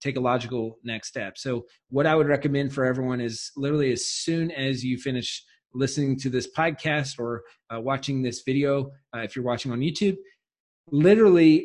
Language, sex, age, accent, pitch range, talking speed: English, male, 30-49, American, 135-170 Hz, 175 wpm